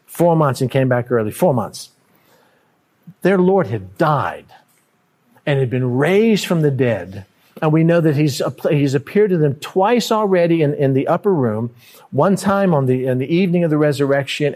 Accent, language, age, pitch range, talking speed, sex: American, English, 50-69, 120-170 Hz, 185 wpm, male